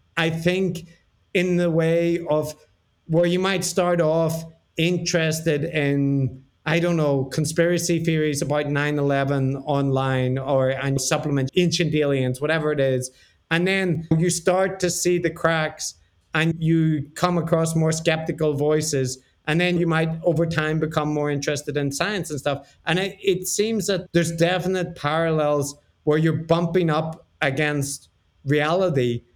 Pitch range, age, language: 145-175 Hz, 50-69, English